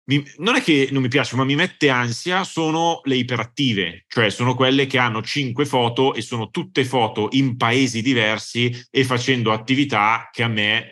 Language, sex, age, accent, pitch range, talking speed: Italian, male, 30-49, native, 105-140 Hz, 180 wpm